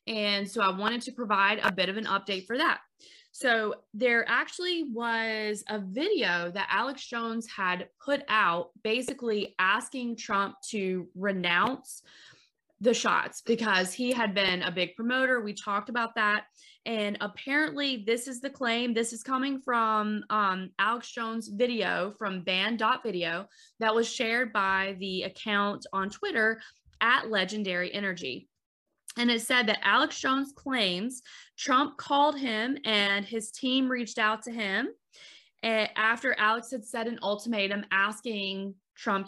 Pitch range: 195-250 Hz